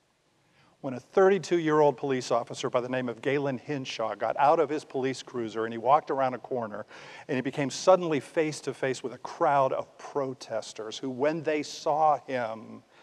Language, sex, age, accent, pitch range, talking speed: English, male, 50-69, American, 120-155 Hz, 175 wpm